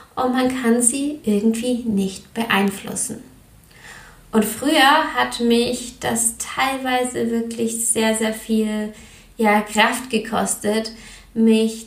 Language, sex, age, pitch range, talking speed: German, female, 20-39, 215-250 Hz, 100 wpm